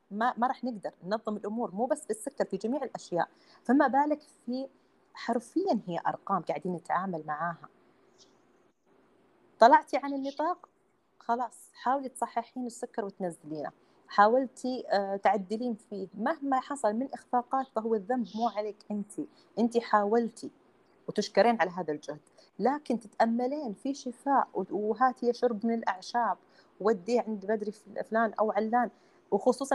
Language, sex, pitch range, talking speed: Arabic, female, 195-255 Hz, 125 wpm